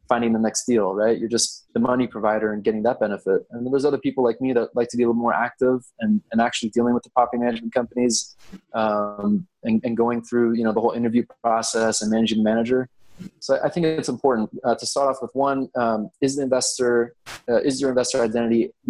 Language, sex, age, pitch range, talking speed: English, male, 20-39, 110-130 Hz, 225 wpm